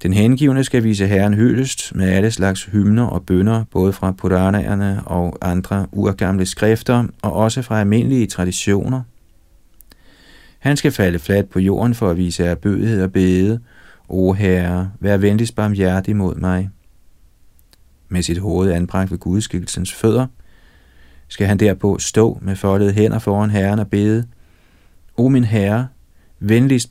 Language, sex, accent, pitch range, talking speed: Danish, male, native, 90-110 Hz, 145 wpm